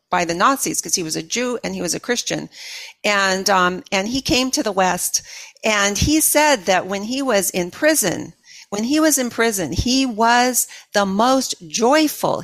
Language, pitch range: English, 180-235 Hz